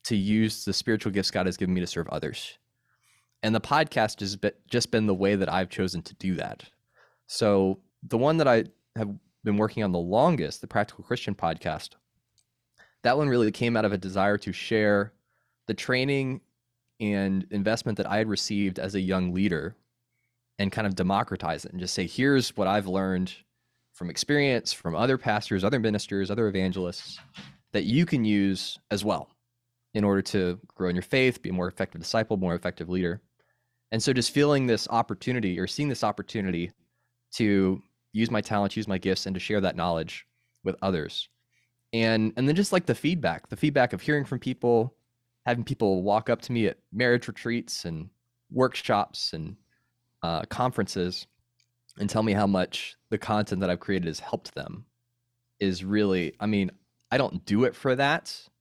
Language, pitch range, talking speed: English, 95-120 Hz, 185 wpm